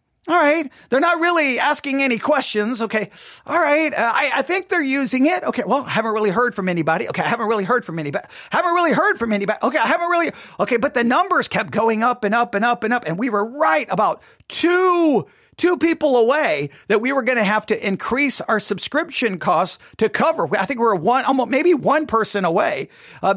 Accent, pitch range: American, 205-280 Hz